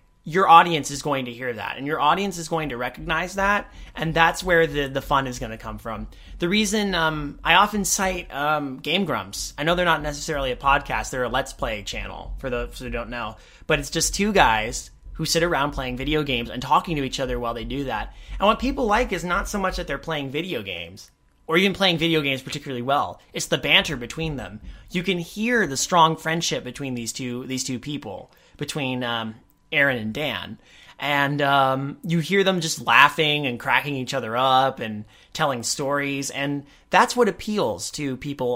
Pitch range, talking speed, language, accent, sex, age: 130-170 Hz, 210 wpm, English, American, male, 30-49